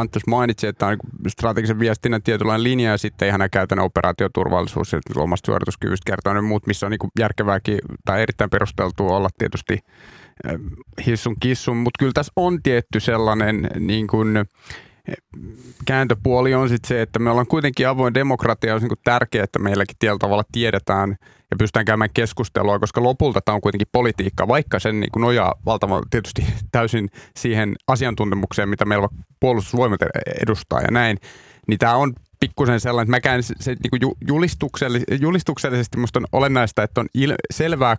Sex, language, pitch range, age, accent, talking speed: male, Finnish, 105-125 Hz, 30-49, native, 155 wpm